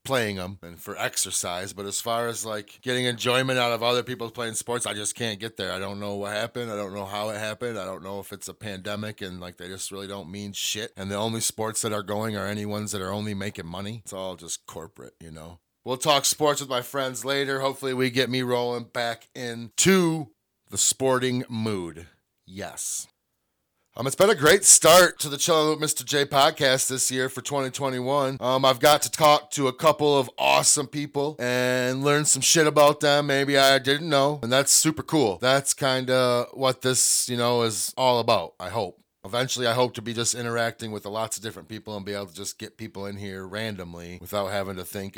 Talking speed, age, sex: 225 wpm, 30-49, male